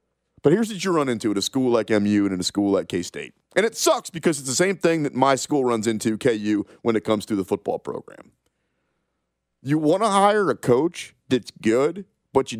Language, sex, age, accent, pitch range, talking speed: English, male, 30-49, American, 95-160 Hz, 230 wpm